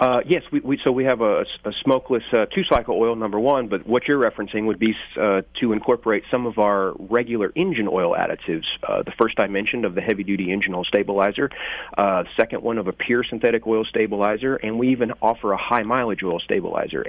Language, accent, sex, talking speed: English, American, male, 200 wpm